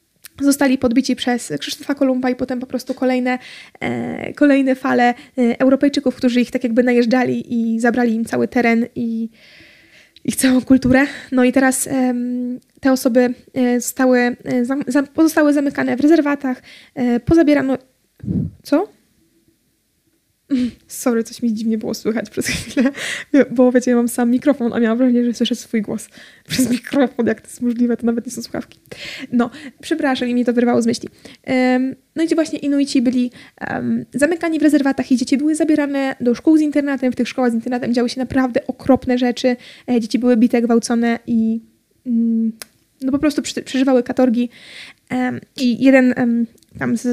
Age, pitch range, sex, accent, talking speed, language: 20-39, 240-270 Hz, female, native, 155 wpm, Polish